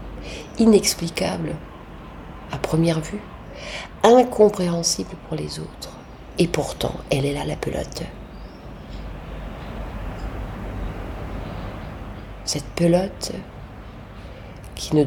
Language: French